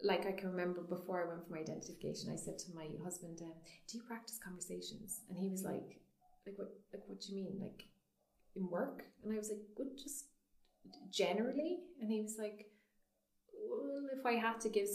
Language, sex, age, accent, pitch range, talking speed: English, female, 30-49, Irish, 165-210 Hz, 205 wpm